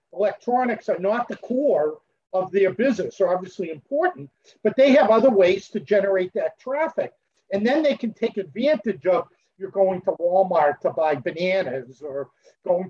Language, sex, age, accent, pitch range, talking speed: English, male, 50-69, American, 155-200 Hz, 165 wpm